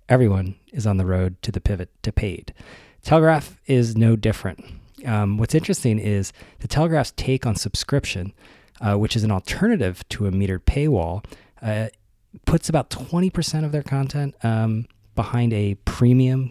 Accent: American